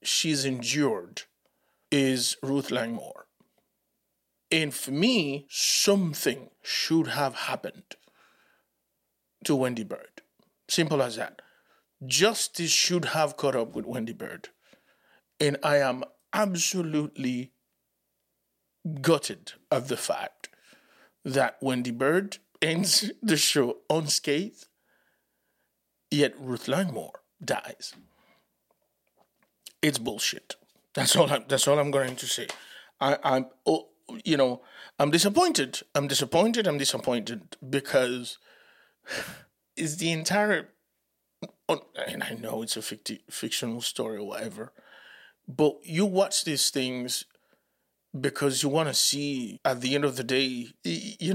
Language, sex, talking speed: English, male, 115 wpm